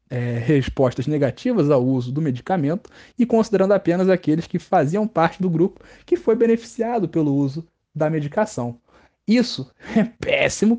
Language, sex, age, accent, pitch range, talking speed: Portuguese, male, 20-39, Brazilian, 145-205 Hz, 140 wpm